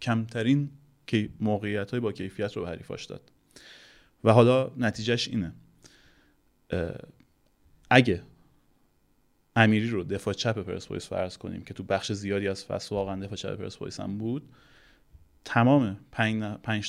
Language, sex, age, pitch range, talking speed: Persian, male, 30-49, 100-125 Hz, 125 wpm